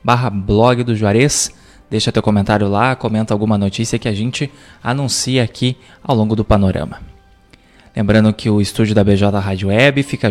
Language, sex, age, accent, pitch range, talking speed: Portuguese, male, 20-39, Brazilian, 105-125 Hz, 175 wpm